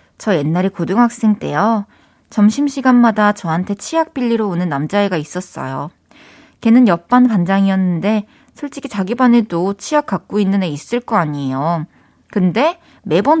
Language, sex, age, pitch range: Korean, female, 20-39, 175-240 Hz